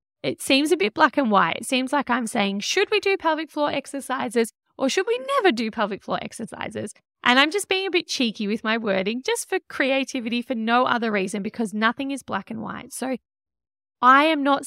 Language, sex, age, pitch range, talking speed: English, female, 10-29, 225-290 Hz, 215 wpm